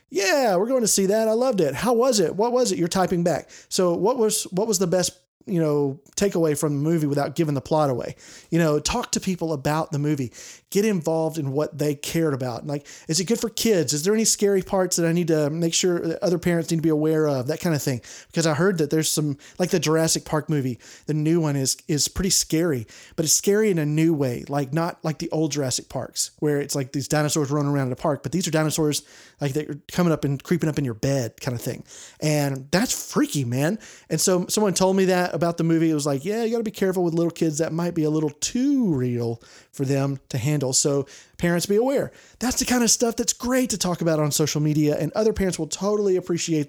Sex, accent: male, American